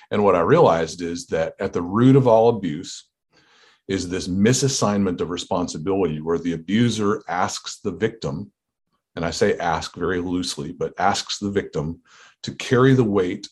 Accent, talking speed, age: American, 165 wpm, 40-59